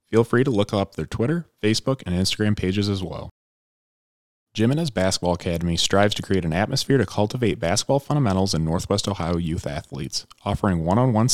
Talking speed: 170 wpm